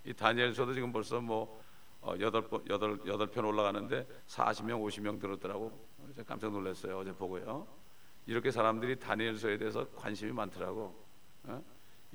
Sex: male